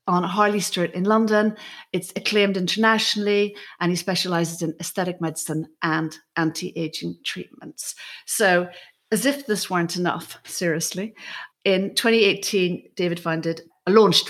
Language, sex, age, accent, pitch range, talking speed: English, female, 40-59, British, 160-195 Hz, 120 wpm